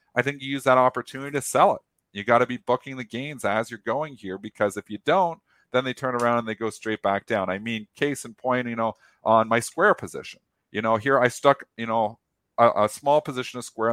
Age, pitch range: 40-59, 120-155 Hz